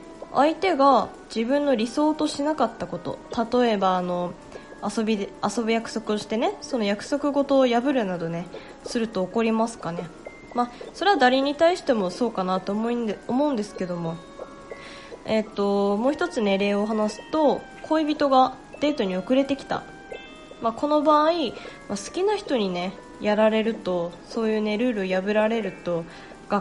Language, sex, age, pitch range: Japanese, female, 20-39, 200-290 Hz